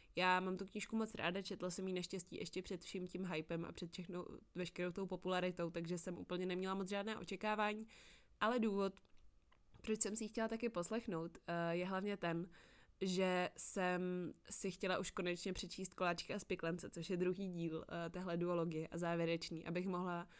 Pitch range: 175-200 Hz